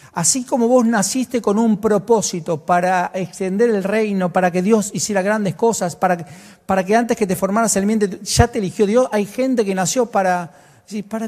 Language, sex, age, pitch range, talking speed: Spanish, male, 40-59, 155-205 Hz, 190 wpm